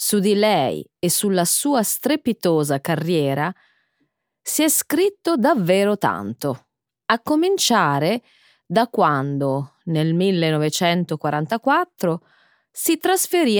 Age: 30-49